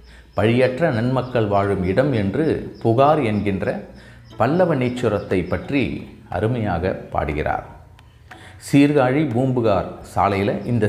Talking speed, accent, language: 90 wpm, native, Tamil